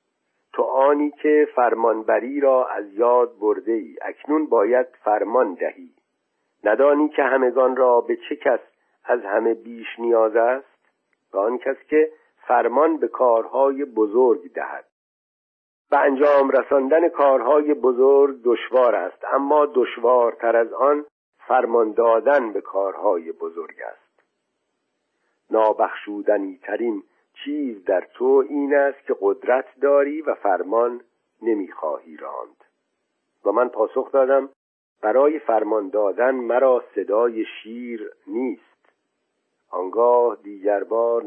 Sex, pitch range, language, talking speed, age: male, 115-150 Hz, Persian, 110 wpm, 50-69